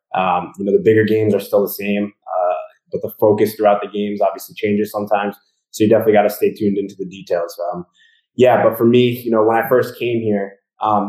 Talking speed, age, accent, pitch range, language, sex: 235 wpm, 20-39, American, 95-110 Hz, English, male